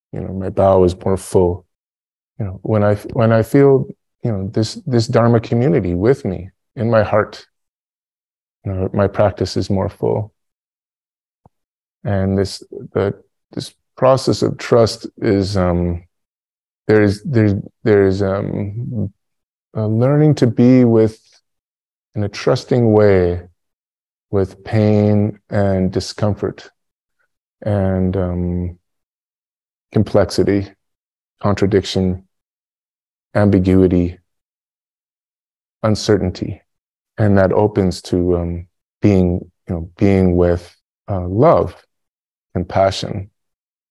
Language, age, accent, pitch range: English, 20-39, American, 90-110 Hz